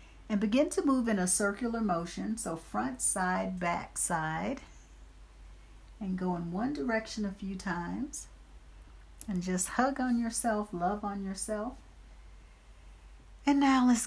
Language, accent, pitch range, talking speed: English, American, 165-220 Hz, 135 wpm